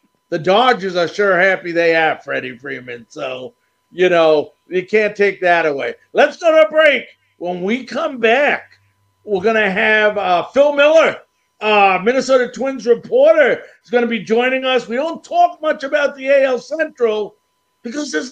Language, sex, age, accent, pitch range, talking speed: English, male, 50-69, American, 200-255 Hz, 165 wpm